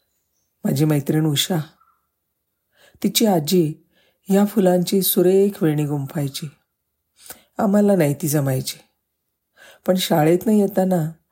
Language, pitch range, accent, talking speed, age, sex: Marathi, 145-185 Hz, native, 95 wpm, 40-59, female